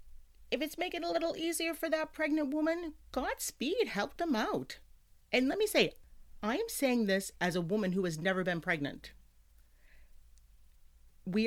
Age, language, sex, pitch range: 40-59, English, female, 145-230 Hz